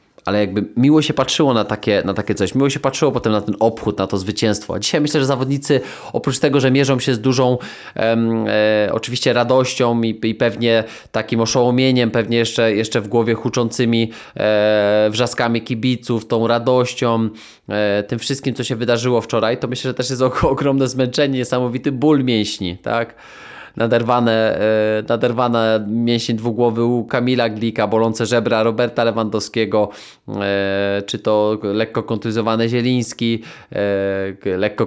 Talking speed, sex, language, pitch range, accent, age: 145 wpm, male, Polish, 110-130 Hz, native, 20-39